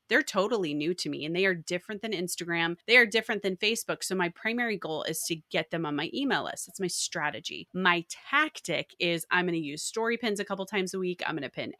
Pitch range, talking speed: 165-205 Hz, 250 wpm